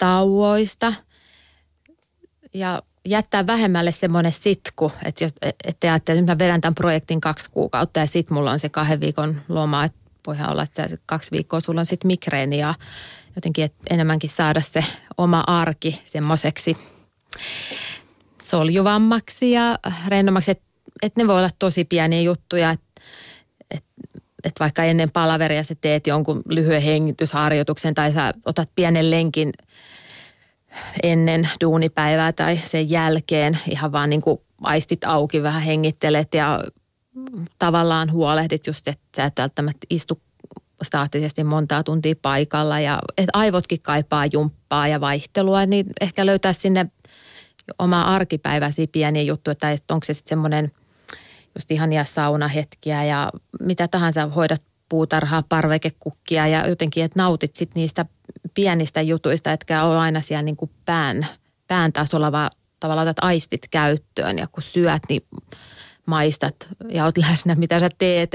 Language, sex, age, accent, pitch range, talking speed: Finnish, female, 30-49, native, 150-175 Hz, 135 wpm